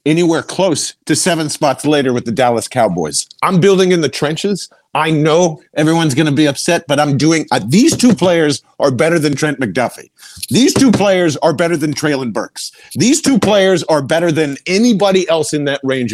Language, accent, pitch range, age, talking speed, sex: English, American, 135-165 Hz, 50-69, 195 wpm, male